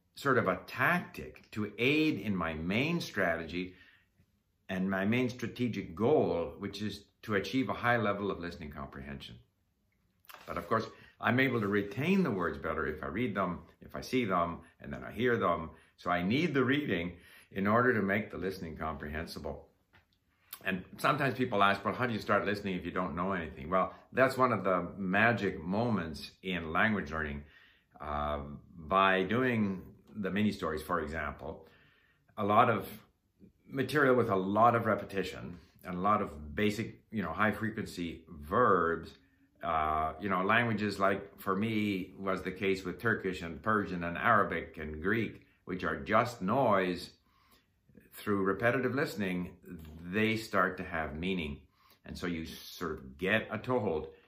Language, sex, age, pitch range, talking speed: English, male, 60-79, 85-110 Hz, 165 wpm